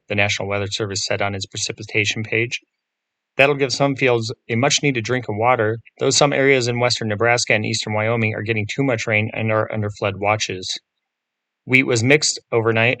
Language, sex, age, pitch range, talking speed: English, male, 30-49, 105-125 Hz, 190 wpm